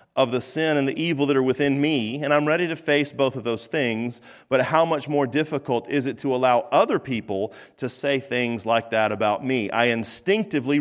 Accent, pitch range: American, 115-145 Hz